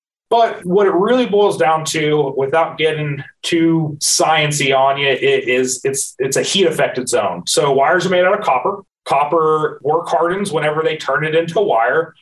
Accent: American